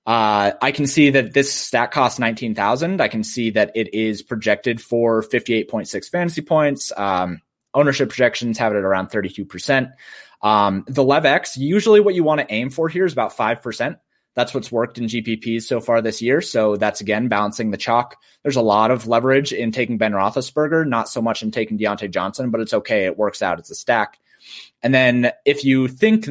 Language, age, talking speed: English, 20-39, 200 wpm